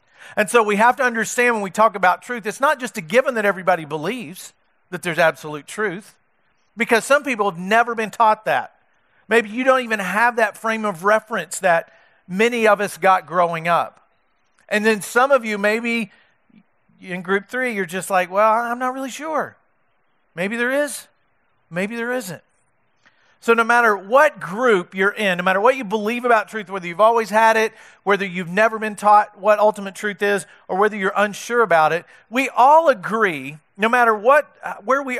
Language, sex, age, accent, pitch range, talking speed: English, male, 40-59, American, 195-240 Hz, 190 wpm